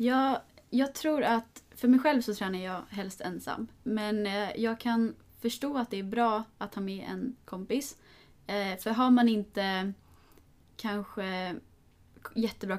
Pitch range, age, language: 185-225 Hz, 20-39, Swedish